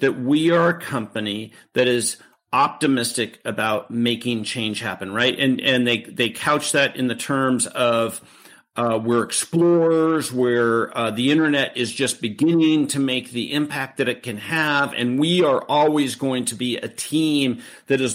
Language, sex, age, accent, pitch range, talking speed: English, male, 50-69, American, 120-150 Hz, 170 wpm